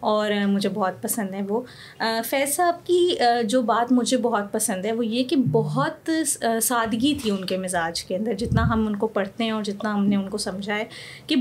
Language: Urdu